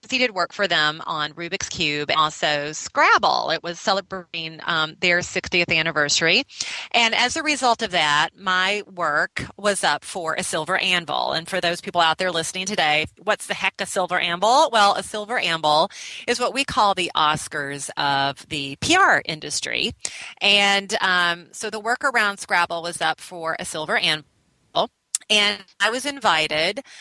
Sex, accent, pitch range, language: female, American, 160-210 Hz, English